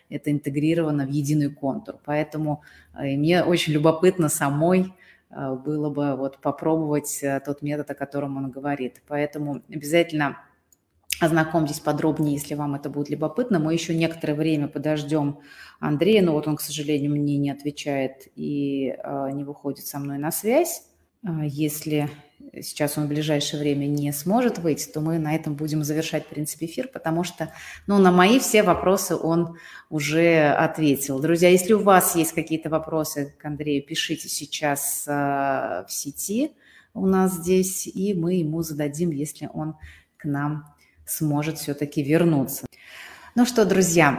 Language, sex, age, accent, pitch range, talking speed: Russian, female, 30-49, native, 145-170 Hz, 145 wpm